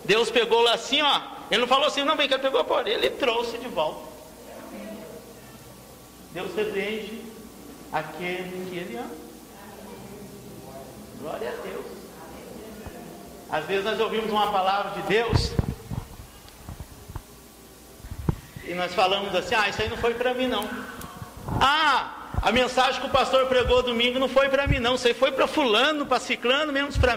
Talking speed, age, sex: 155 wpm, 50-69, male